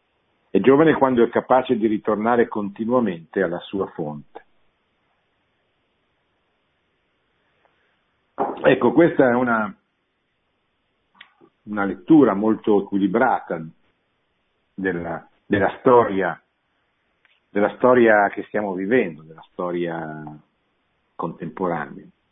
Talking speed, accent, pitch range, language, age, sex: 80 wpm, native, 95-115 Hz, Italian, 50-69, male